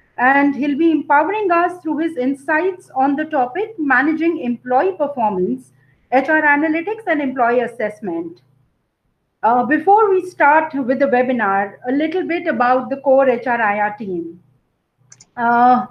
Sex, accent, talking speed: female, Indian, 130 wpm